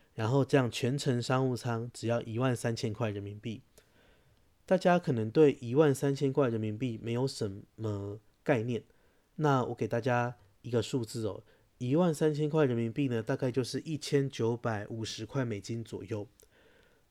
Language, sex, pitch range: Chinese, male, 110-140 Hz